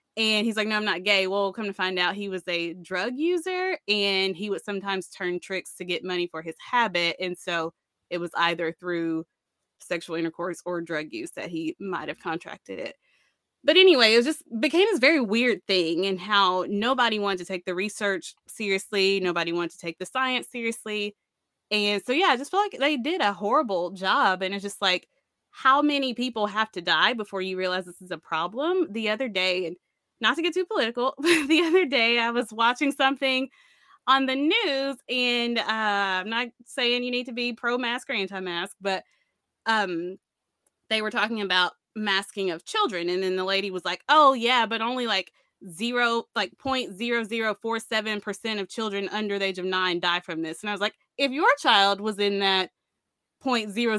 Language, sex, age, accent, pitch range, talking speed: English, female, 20-39, American, 185-250 Hz, 205 wpm